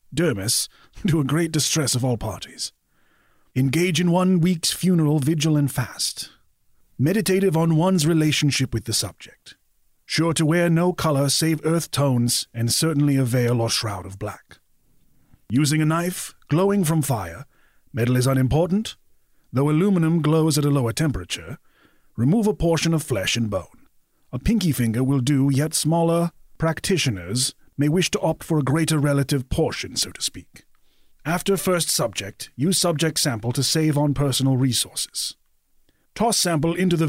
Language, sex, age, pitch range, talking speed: English, male, 30-49, 130-165 Hz, 155 wpm